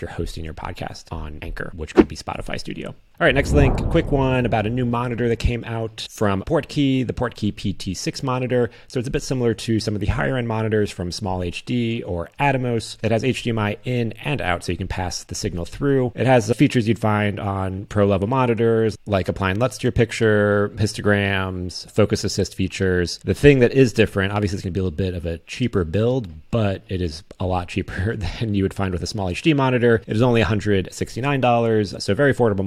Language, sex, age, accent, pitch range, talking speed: English, male, 30-49, American, 95-120 Hz, 220 wpm